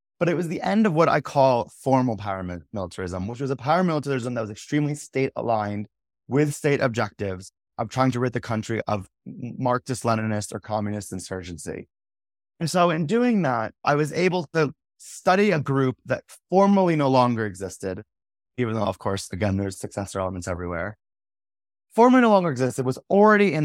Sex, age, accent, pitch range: male, 20-39, American, 105-145 Hz